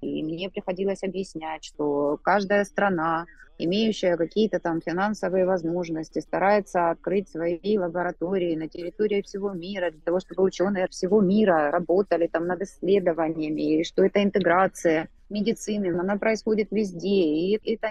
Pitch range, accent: 175-210 Hz, native